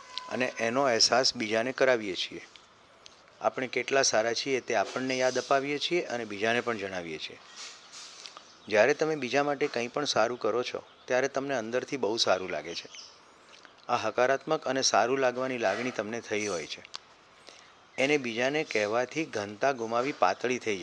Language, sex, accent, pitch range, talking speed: Gujarati, male, native, 115-135 Hz, 115 wpm